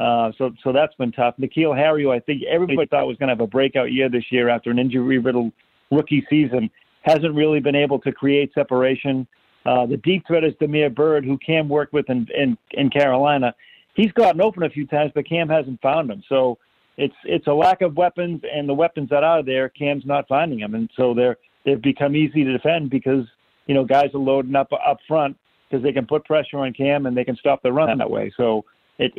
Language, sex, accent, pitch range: English, male, American, 130-150 Hz